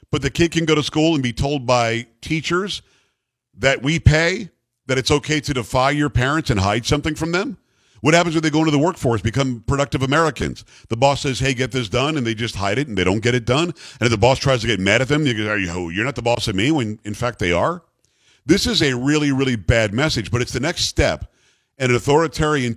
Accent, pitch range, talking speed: American, 115-150 Hz, 255 wpm